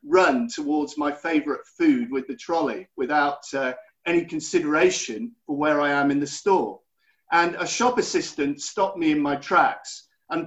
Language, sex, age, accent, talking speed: English, male, 50-69, British, 165 wpm